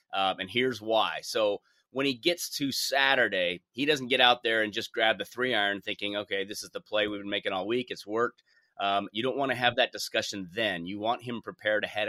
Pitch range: 110-140 Hz